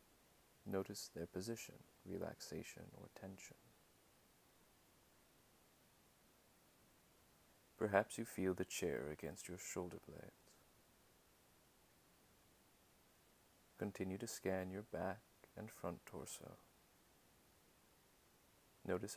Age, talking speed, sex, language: 30-49, 75 wpm, male, English